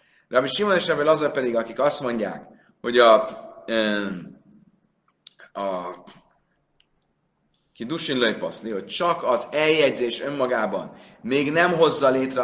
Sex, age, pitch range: male, 30-49, 125-195 Hz